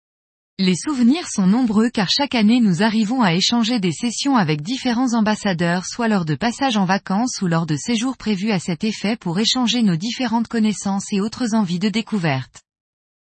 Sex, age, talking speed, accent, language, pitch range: female, 20-39, 180 wpm, French, French, 185-240 Hz